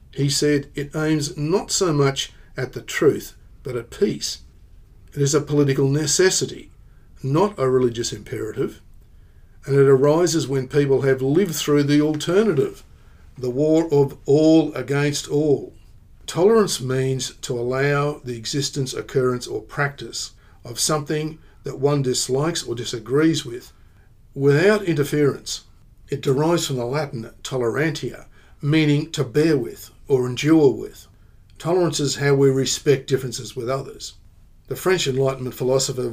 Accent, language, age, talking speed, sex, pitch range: Australian, English, 50-69, 135 wpm, male, 125-145 Hz